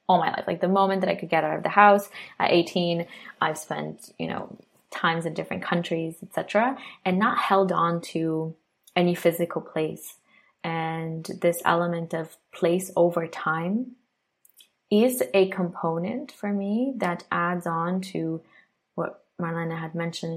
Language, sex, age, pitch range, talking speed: English, female, 20-39, 165-180 Hz, 155 wpm